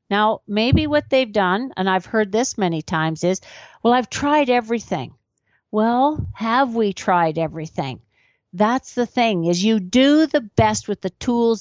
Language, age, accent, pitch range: English, 50-69, American, 190-245 Hz